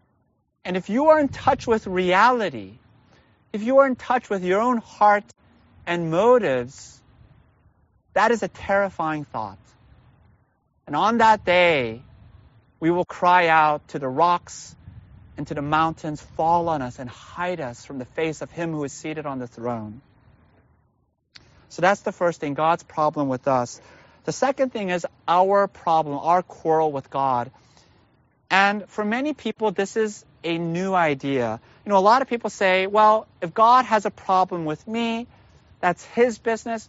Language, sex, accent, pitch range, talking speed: English, male, American, 135-210 Hz, 165 wpm